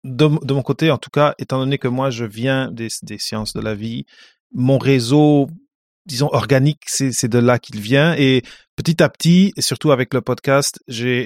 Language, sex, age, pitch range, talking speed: French, male, 30-49, 120-150 Hz, 210 wpm